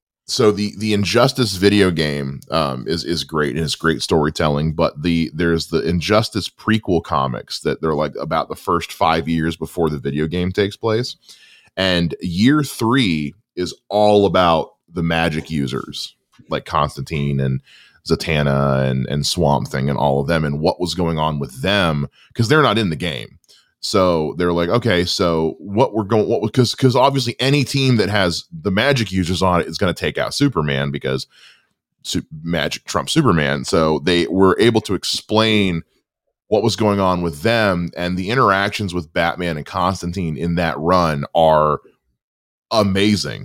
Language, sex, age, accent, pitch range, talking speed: English, male, 20-39, American, 80-110 Hz, 170 wpm